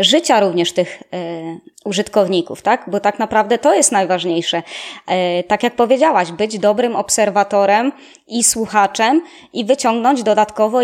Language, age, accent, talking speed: Polish, 20-39, native, 120 wpm